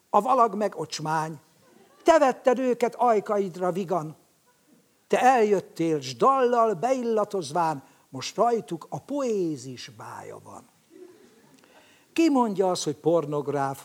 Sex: male